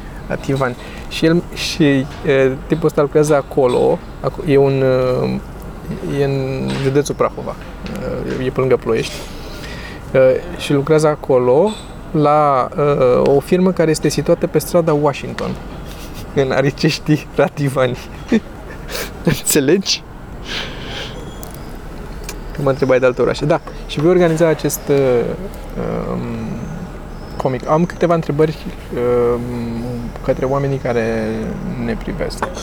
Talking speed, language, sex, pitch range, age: 120 wpm, Romanian, male, 120-150 Hz, 20-39